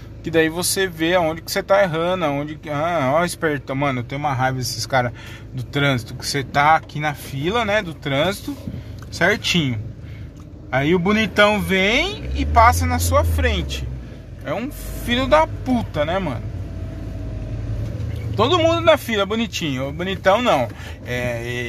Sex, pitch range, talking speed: male, 110-160 Hz, 160 wpm